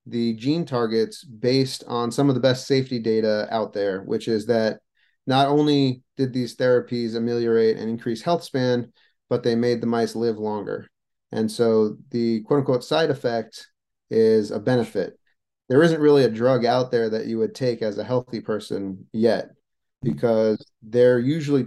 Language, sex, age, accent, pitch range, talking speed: English, male, 30-49, American, 115-135 Hz, 170 wpm